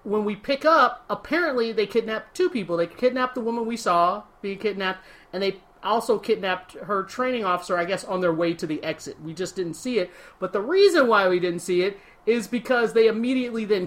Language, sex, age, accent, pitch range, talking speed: English, male, 30-49, American, 175-230 Hz, 215 wpm